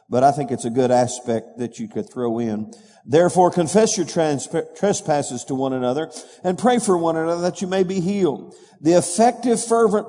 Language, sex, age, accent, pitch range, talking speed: English, male, 50-69, American, 130-185 Hz, 190 wpm